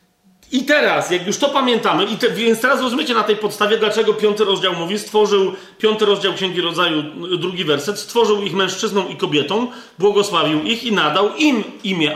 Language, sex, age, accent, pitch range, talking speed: Polish, male, 40-59, native, 190-235 Hz, 180 wpm